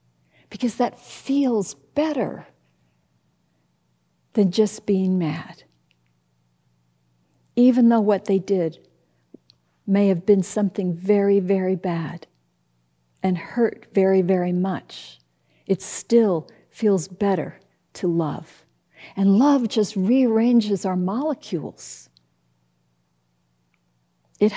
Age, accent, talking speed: 50-69, American, 95 wpm